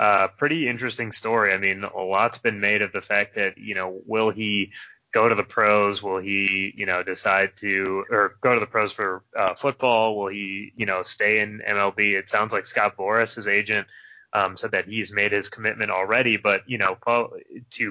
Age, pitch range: 20-39, 100-110 Hz